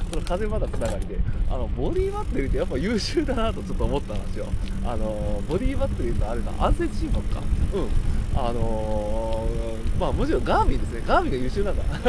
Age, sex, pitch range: 20-39, male, 90-110 Hz